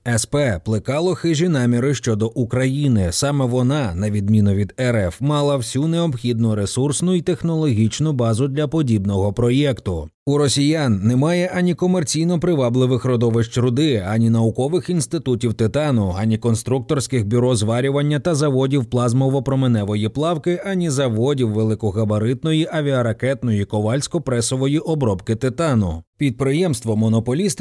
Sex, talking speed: male, 110 wpm